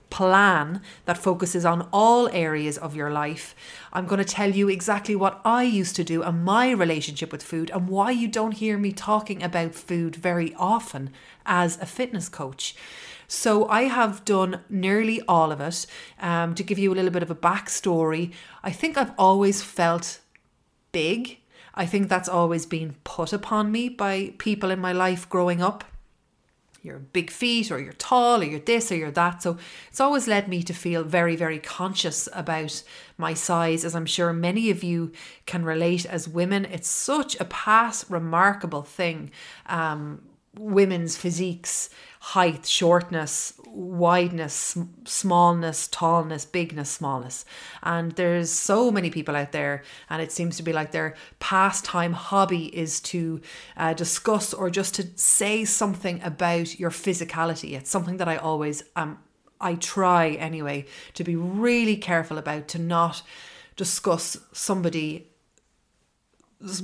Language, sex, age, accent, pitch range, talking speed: English, female, 30-49, Irish, 165-200 Hz, 160 wpm